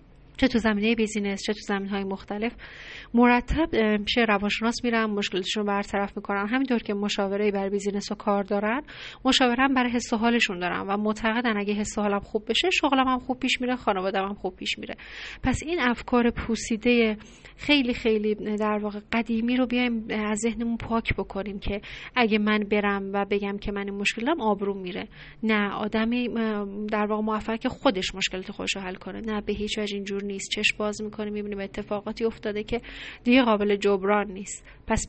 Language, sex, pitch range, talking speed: Persian, female, 200-230 Hz, 175 wpm